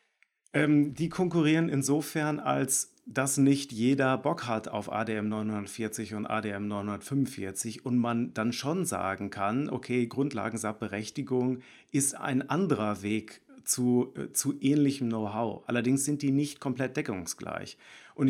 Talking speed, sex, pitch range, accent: 125 wpm, male, 110-135 Hz, German